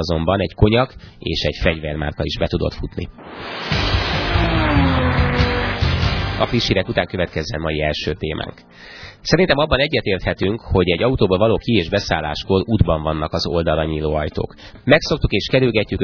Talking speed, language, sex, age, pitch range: 130 wpm, Hungarian, male, 30-49, 80-105 Hz